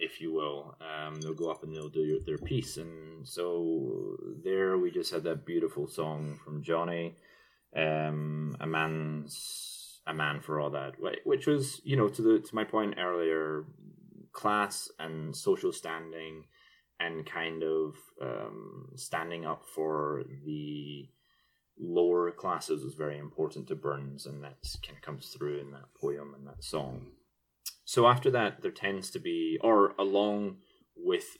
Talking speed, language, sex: 155 wpm, English, male